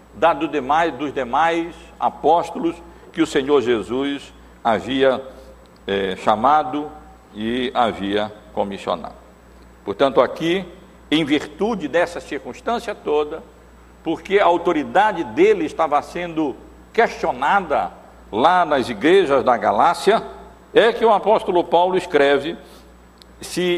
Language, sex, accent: Portuguese, male, Brazilian